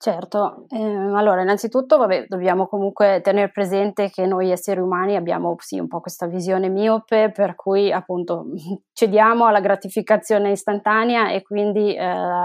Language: Italian